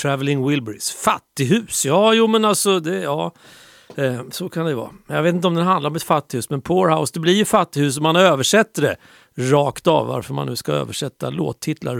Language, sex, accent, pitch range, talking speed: Swedish, male, native, 135-180 Hz, 200 wpm